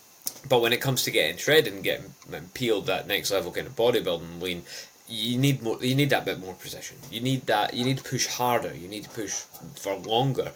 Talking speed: 225 wpm